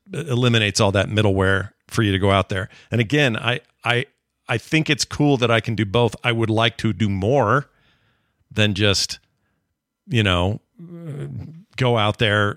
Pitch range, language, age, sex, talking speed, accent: 105-130 Hz, English, 40-59, male, 170 wpm, American